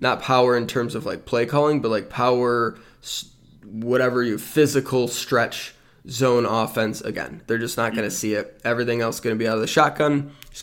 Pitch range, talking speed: 110-125 Hz, 205 wpm